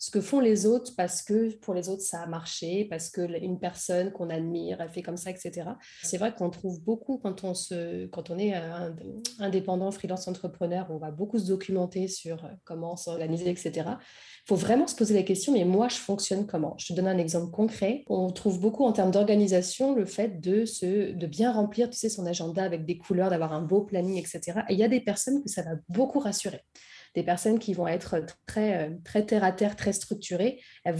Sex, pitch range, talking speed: female, 175-220 Hz, 215 wpm